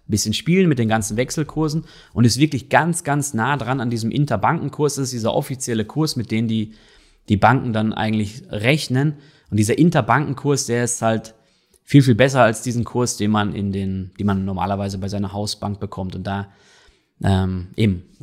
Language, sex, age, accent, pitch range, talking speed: German, male, 20-39, German, 100-135 Hz, 185 wpm